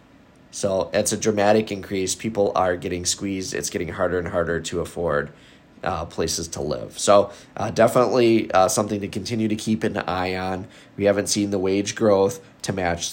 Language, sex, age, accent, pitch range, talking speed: English, male, 20-39, American, 105-130 Hz, 185 wpm